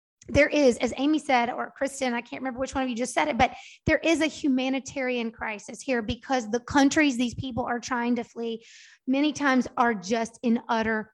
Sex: female